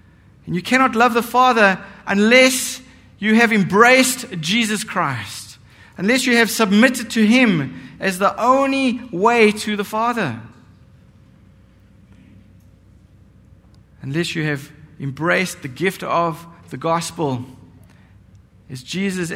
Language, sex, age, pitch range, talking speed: English, male, 50-69, 140-225 Hz, 110 wpm